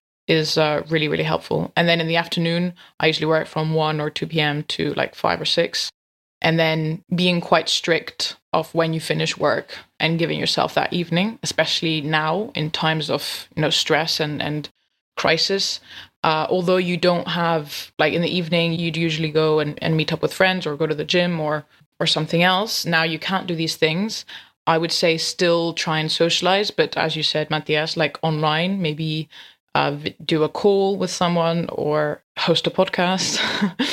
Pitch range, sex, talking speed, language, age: 155-180 Hz, female, 190 wpm, English, 20-39